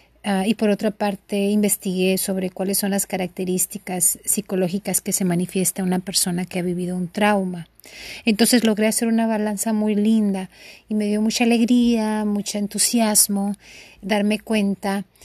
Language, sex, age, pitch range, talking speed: Spanish, female, 30-49, 190-215 Hz, 150 wpm